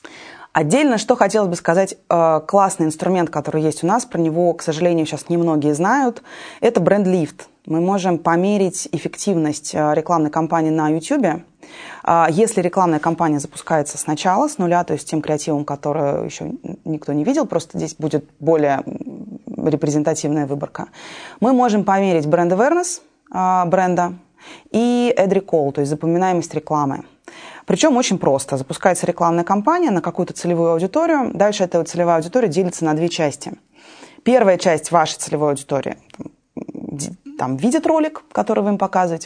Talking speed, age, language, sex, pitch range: 140 wpm, 20-39, Russian, female, 155-195 Hz